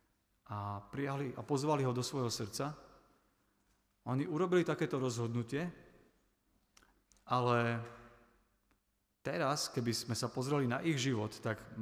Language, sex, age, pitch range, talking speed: Slovak, male, 40-59, 110-140 Hz, 110 wpm